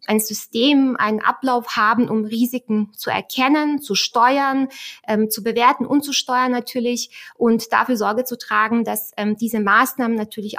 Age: 20-39